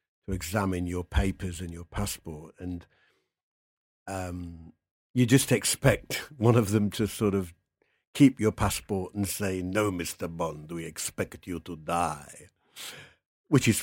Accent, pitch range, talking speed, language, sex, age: British, 90-110 Hz, 145 wpm, English, male, 50-69